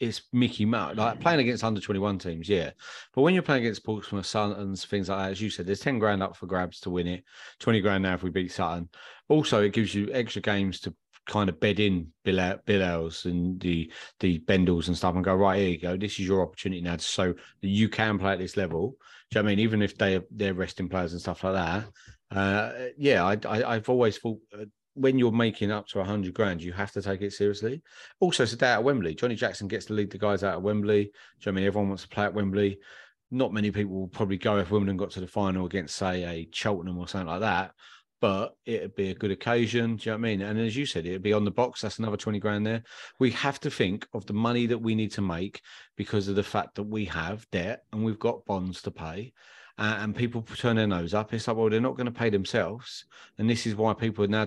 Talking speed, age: 265 wpm, 30-49